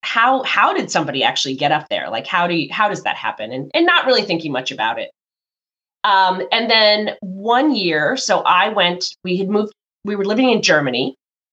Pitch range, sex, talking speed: 170-235 Hz, female, 210 wpm